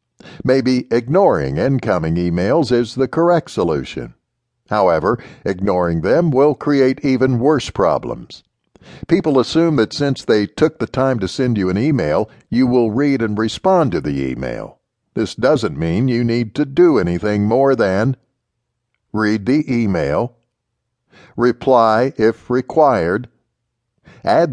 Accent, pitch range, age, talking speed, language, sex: American, 110-140 Hz, 60-79, 130 wpm, English, male